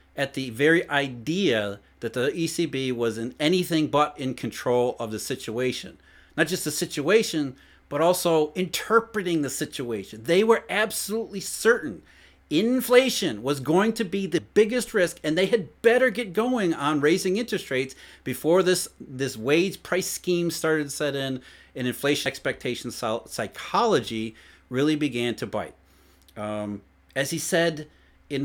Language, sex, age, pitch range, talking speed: English, male, 40-59, 130-190 Hz, 150 wpm